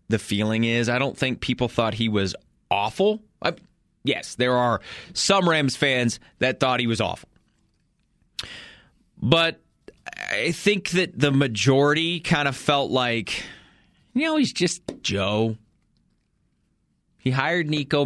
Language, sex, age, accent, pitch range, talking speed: English, male, 20-39, American, 110-140 Hz, 135 wpm